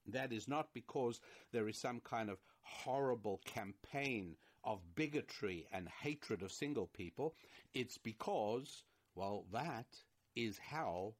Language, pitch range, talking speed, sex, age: English, 100-120 Hz, 130 wpm, male, 60-79